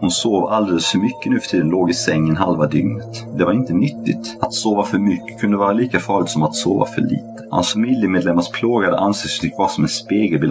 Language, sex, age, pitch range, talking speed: Swedish, male, 30-49, 75-100 Hz, 215 wpm